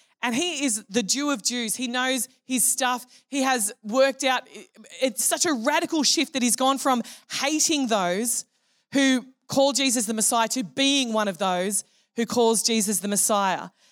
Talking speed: 175 wpm